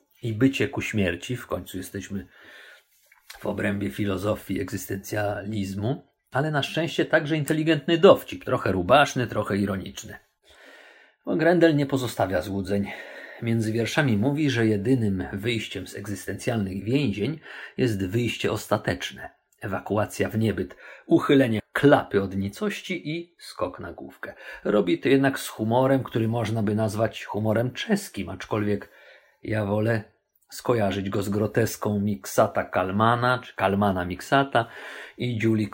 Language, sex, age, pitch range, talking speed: Polish, male, 50-69, 100-150 Hz, 125 wpm